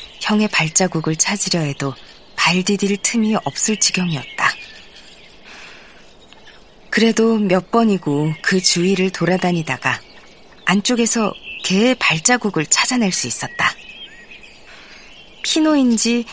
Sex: female